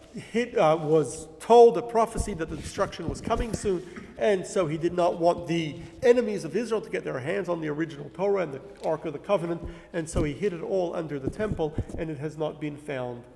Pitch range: 150-195 Hz